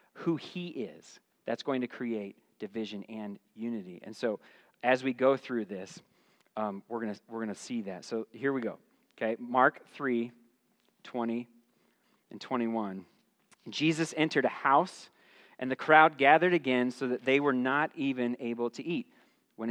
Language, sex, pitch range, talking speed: English, male, 115-155 Hz, 165 wpm